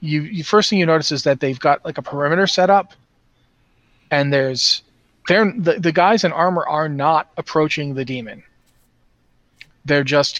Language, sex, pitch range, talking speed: English, male, 130-155 Hz, 175 wpm